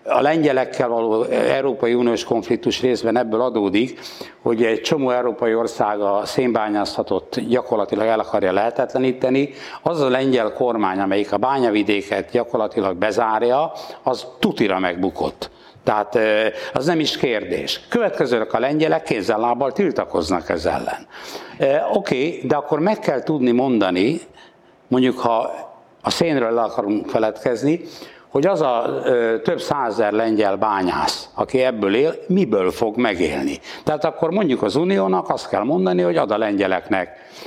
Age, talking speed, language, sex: 60-79, 140 wpm, Hungarian, male